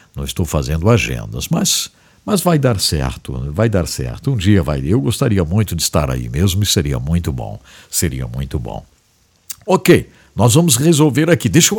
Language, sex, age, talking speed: English, male, 60-79, 185 wpm